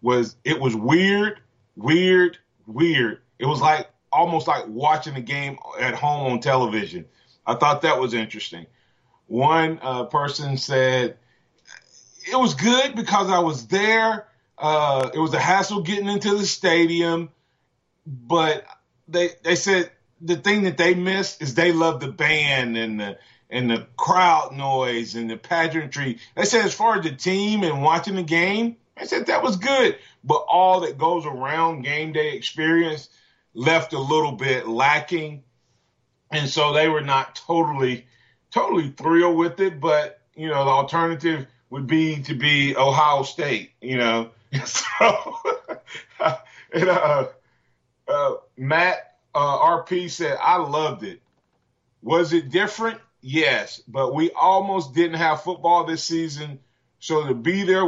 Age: 30-49